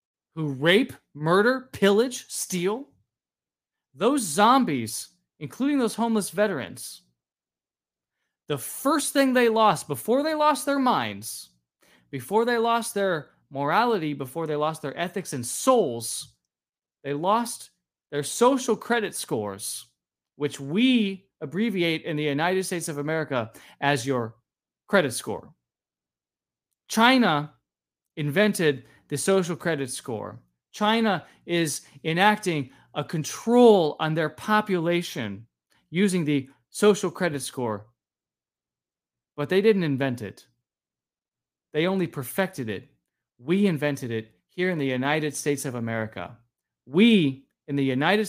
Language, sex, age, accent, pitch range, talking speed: English, male, 20-39, American, 130-205 Hz, 115 wpm